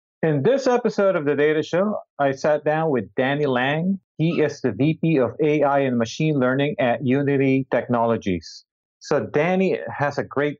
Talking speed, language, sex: 170 wpm, English, male